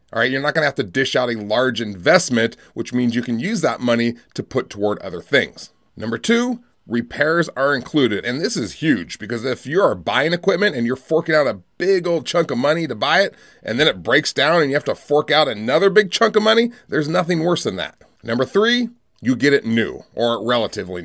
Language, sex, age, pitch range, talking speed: English, male, 30-49, 120-170 Hz, 235 wpm